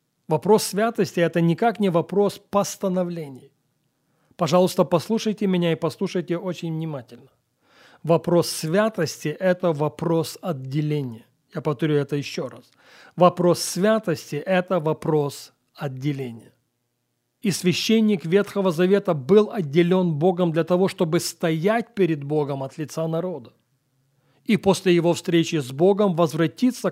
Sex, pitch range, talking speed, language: male, 150-190 Hz, 115 wpm, Russian